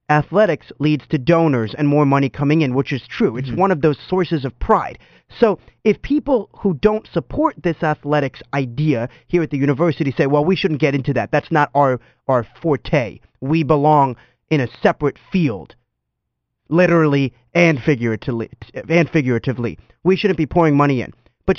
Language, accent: English, American